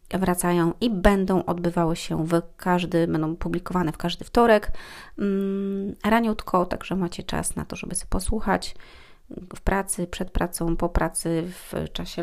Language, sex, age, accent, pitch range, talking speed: Polish, female, 30-49, native, 165-190 Hz, 140 wpm